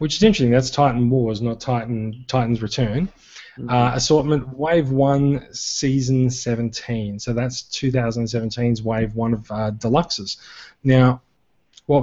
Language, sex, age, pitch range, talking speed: English, male, 20-39, 115-140 Hz, 130 wpm